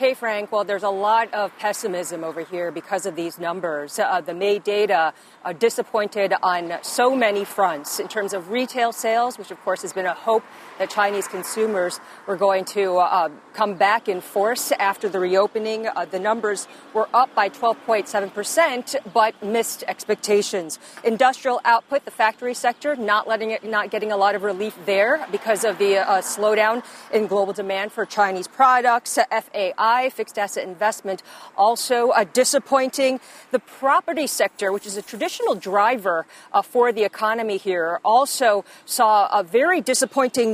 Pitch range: 200-250 Hz